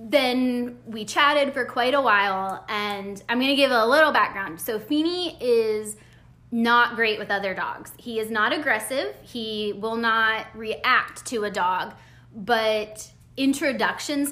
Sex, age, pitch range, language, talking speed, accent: female, 20-39, 205-270 Hz, English, 145 wpm, American